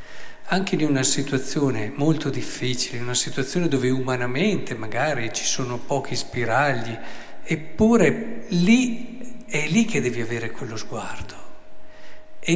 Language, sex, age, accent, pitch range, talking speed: Italian, male, 50-69, native, 125-160 Hz, 125 wpm